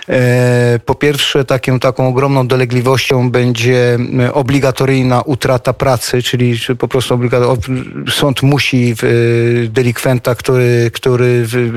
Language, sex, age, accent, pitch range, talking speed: Polish, male, 40-59, native, 120-135 Hz, 90 wpm